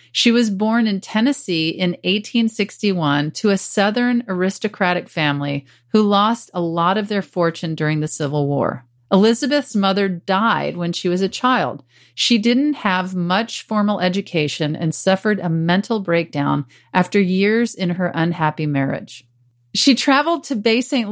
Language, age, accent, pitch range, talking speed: English, 40-59, American, 160-215 Hz, 150 wpm